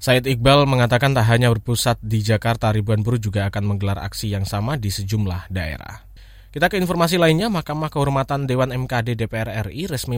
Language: Indonesian